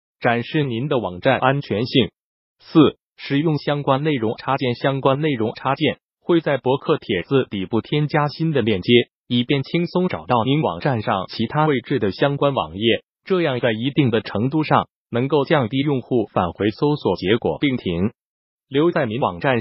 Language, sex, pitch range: Chinese, male, 115-150 Hz